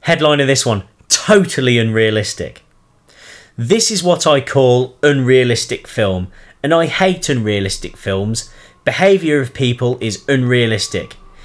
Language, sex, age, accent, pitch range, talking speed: English, male, 30-49, British, 115-160 Hz, 120 wpm